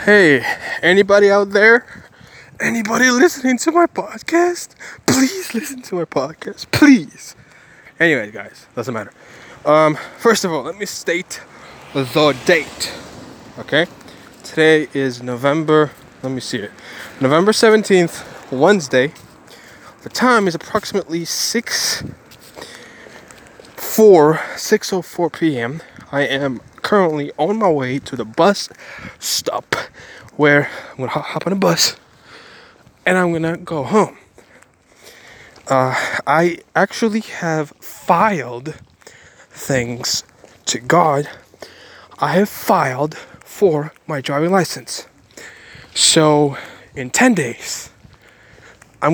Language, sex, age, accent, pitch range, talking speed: English, male, 20-39, American, 135-200 Hz, 110 wpm